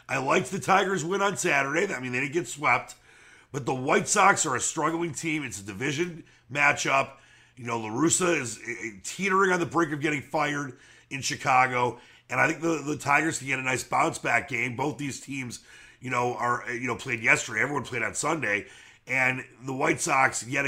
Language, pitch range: English, 125-160 Hz